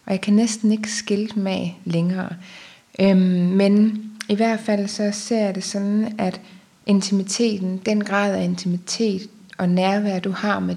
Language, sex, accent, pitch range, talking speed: Danish, female, native, 185-210 Hz, 150 wpm